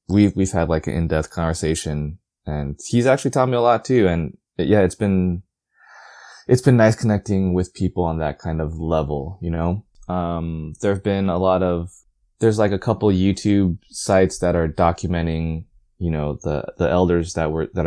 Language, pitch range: English, 80-100 Hz